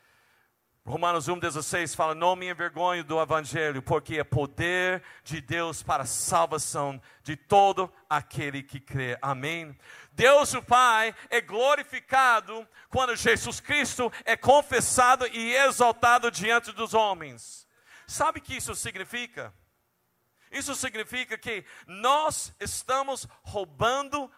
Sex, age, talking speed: male, 50-69, 120 wpm